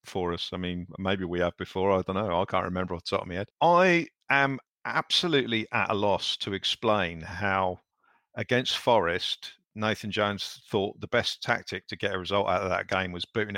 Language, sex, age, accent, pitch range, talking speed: English, male, 50-69, British, 95-110 Hz, 210 wpm